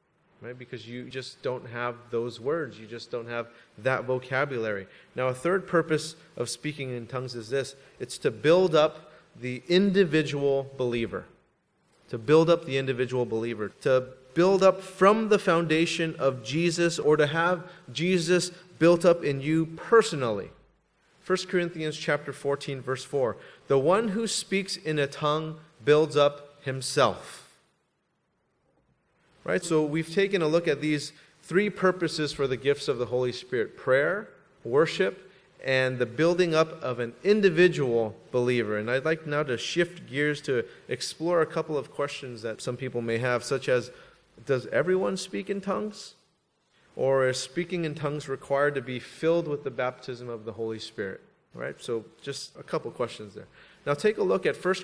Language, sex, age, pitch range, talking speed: English, male, 30-49, 125-165 Hz, 165 wpm